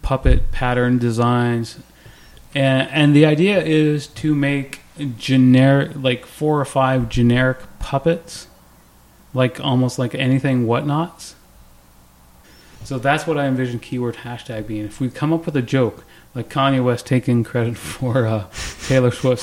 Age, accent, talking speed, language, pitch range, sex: 30-49, American, 140 wpm, English, 110-135 Hz, male